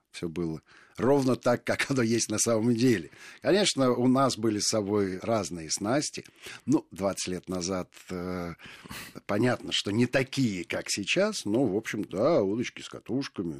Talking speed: 160 wpm